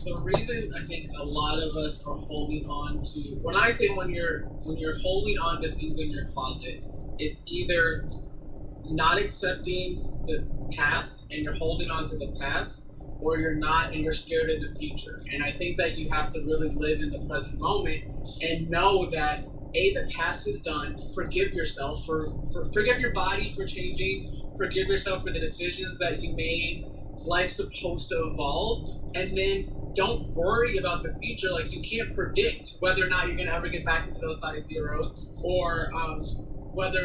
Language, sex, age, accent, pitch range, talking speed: English, male, 20-39, American, 145-170 Hz, 190 wpm